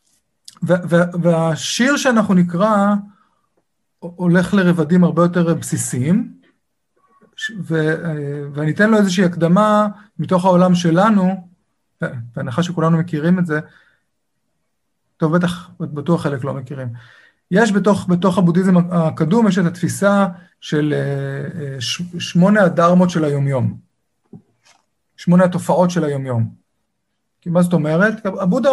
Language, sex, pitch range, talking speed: Hebrew, male, 160-200 Hz, 100 wpm